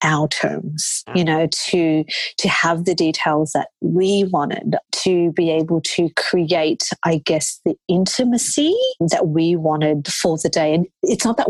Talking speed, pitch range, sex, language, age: 160 wpm, 160-190 Hz, female, English, 40-59